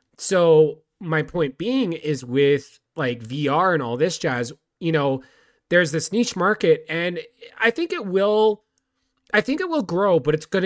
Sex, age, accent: male, 30-49, American